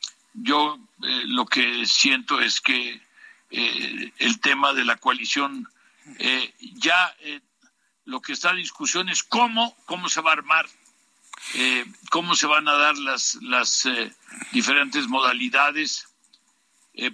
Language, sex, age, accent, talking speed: Spanish, male, 60-79, Mexican, 140 wpm